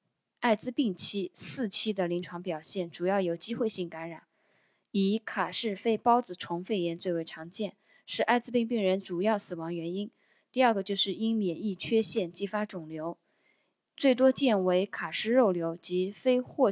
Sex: female